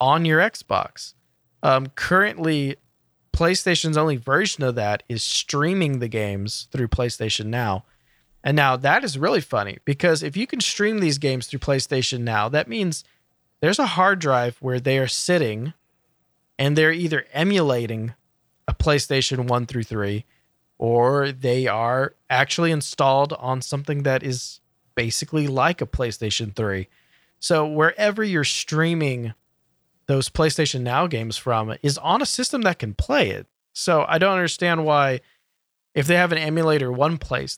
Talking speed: 150 wpm